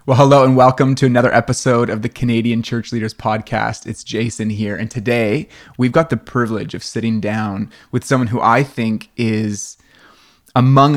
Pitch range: 105-120 Hz